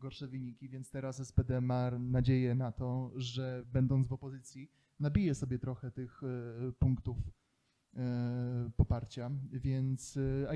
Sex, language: male, Polish